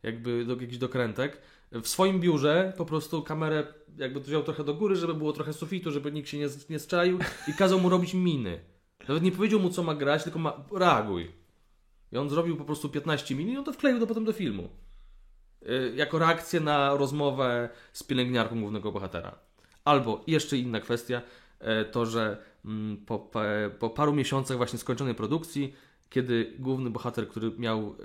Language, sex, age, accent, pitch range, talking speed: Polish, male, 20-39, native, 110-150 Hz, 175 wpm